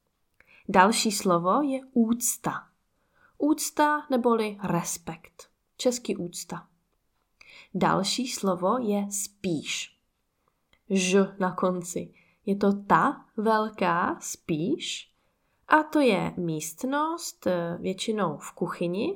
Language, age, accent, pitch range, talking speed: Czech, 20-39, native, 185-245 Hz, 90 wpm